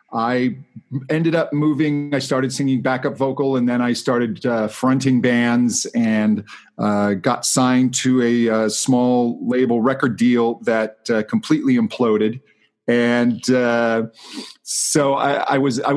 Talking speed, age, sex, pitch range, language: 145 wpm, 40-59, male, 125-155 Hz, English